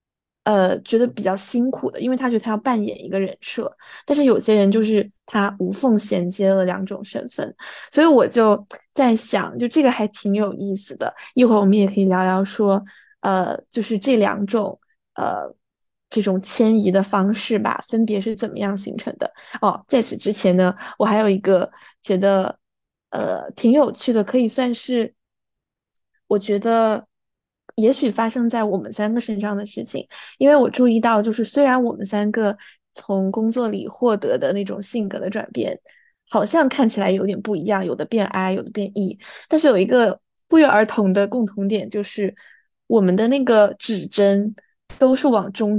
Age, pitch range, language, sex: 20-39, 200-245 Hz, Chinese, female